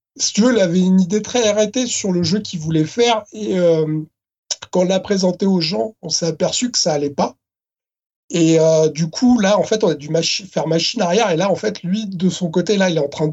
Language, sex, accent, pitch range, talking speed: French, male, French, 160-220 Hz, 250 wpm